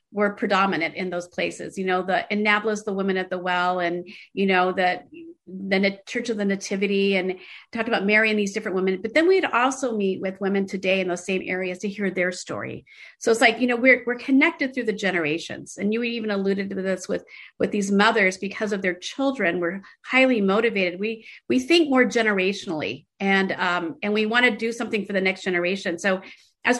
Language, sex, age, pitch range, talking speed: English, female, 40-59, 185-235 Hz, 210 wpm